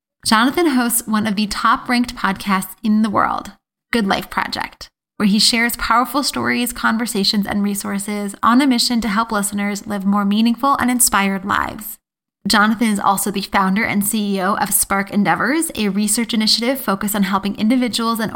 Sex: female